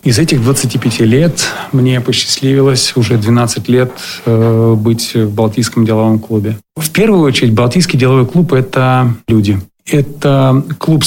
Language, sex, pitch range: Russian, male, 130-165 Hz